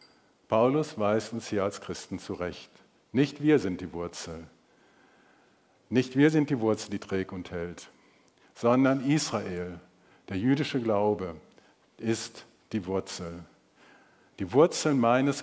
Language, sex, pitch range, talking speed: German, male, 95-125 Hz, 125 wpm